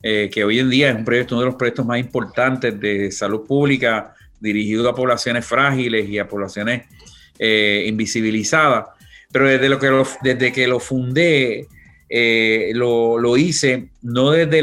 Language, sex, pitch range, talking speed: Spanish, male, 110-130 Hz, 170 wpm